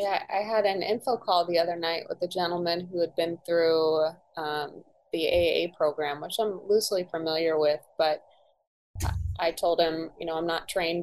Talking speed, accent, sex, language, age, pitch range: 185 wpm, American, female, English, 20-39, 160-190 Hz